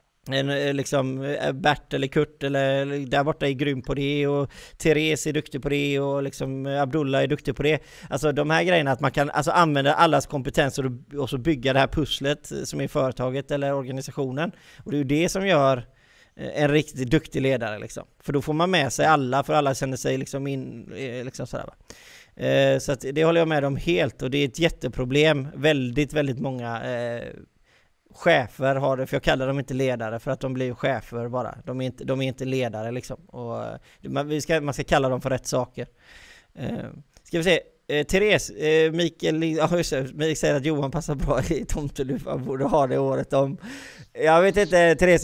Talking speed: 200 wpm